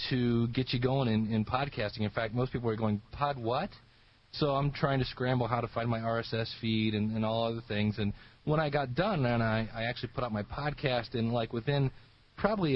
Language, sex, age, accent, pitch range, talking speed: English, male, 40-59, American, 110-135 Hz, 225 wpm